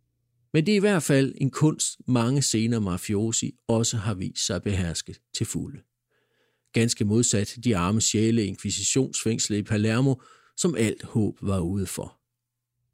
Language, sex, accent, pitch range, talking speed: Danish, male, native, 105-135 Hz, 145 wpm